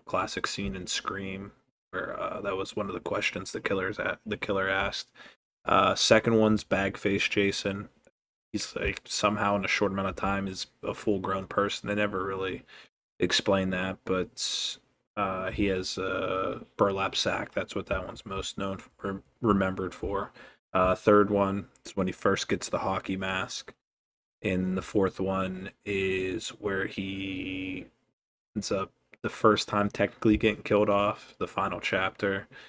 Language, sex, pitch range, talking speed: English, male, 95-105 Hz, 160 wpm